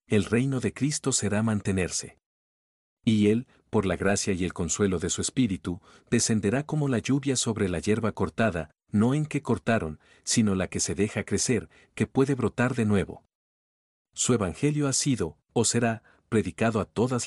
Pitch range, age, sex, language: 95-125 Hz, 50-69, male, Spanish